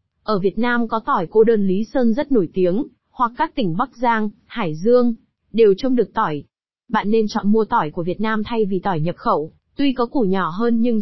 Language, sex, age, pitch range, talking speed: Vietnamese, female, 20-39, 190-245 Hz, 230 wpm